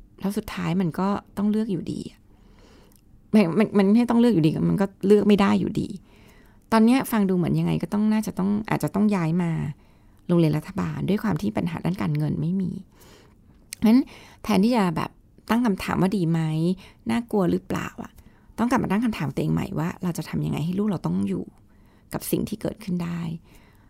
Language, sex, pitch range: Thai, female, 160-210 Hz